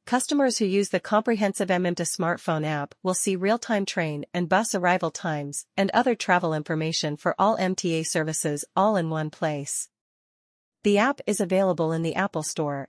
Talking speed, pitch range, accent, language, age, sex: 170 wpm, 165-205 Hz, American, English, 40-59, female